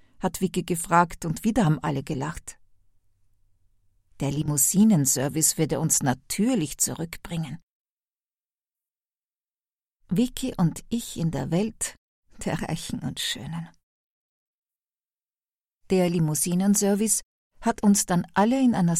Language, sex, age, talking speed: German, female, 50-69, 100 wpm